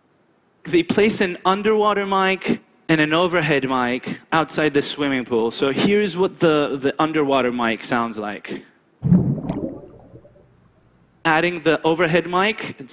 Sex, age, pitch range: male, 30-49, 125-185 Hz